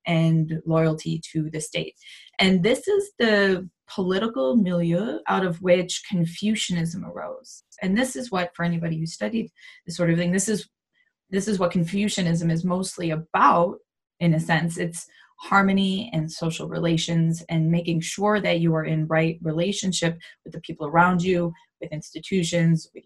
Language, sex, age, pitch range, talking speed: English, female, 20-39, 165-195 Hz, 160 wpm